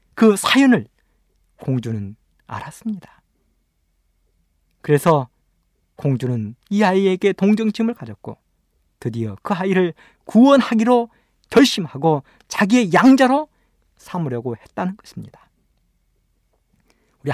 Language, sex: Korean, male